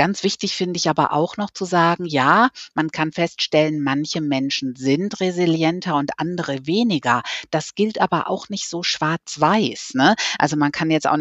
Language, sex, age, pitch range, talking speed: German, female, 50-69, 140-180 Hz, 170 wpm